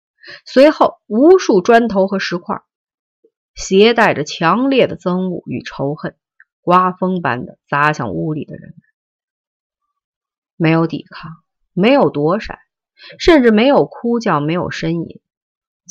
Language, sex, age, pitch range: Chinese, female, 30-49, 150-220 Hz